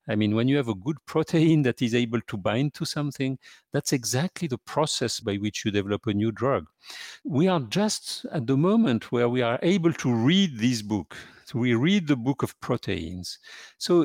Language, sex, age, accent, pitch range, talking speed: English, male, 50-69, French, 110-160 Hz, 200 wpm